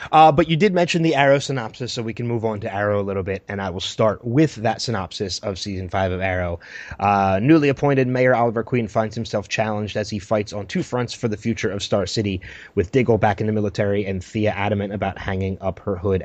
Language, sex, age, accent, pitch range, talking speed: English, male, 20-39, American, 100-120 Hz, 240 wpm